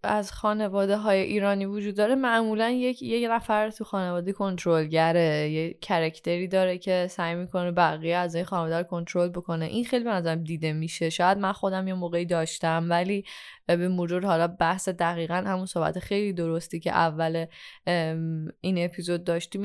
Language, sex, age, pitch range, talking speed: Persian, female, 10-29, 175-235 Hz, 165 wpm